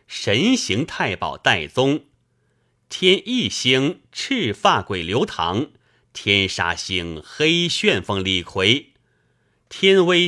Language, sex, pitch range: Chinese, male, 110-155 Hz